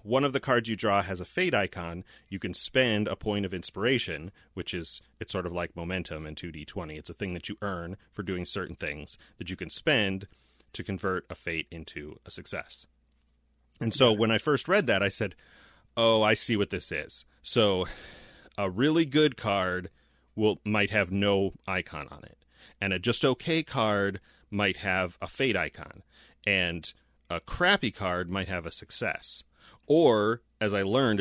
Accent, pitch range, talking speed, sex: American, 90-110 Hz, 185 wpm, male